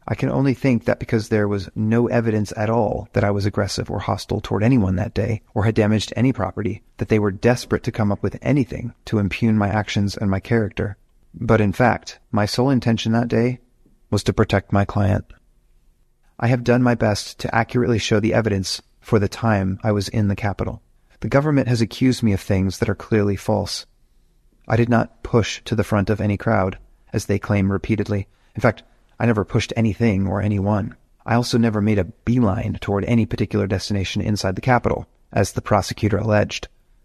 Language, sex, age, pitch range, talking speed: English, male, 30-49, 100-115 Hz, 200 wpm